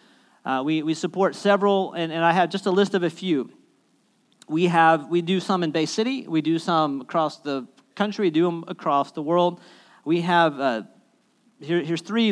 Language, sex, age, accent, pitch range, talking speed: English, male, 40-59, American, 145-180 Hz, 200 wpm